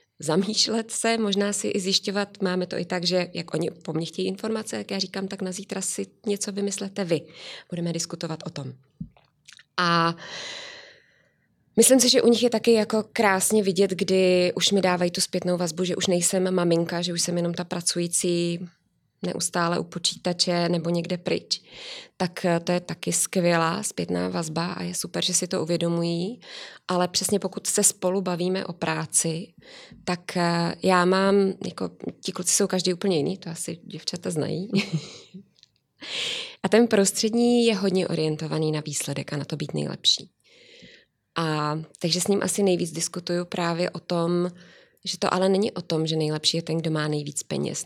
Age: 20-39